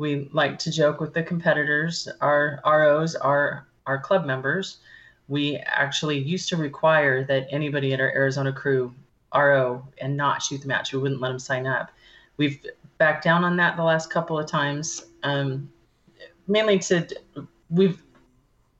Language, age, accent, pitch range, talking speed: English, 30-49, American, 135-160 Hz, 165 wpm